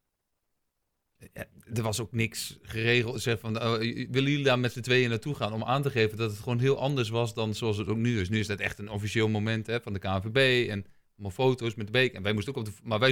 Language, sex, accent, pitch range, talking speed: Dutch, male, Dutch, 100-120 Hz, 240 wpm